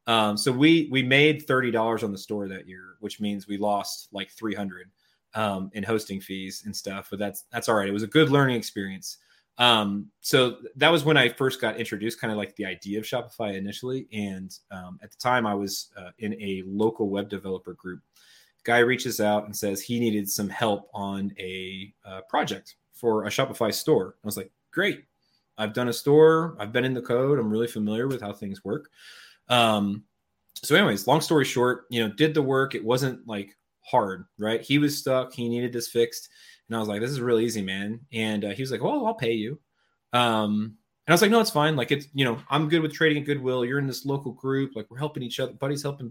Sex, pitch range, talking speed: male, 100-130 Hz, 225 wpm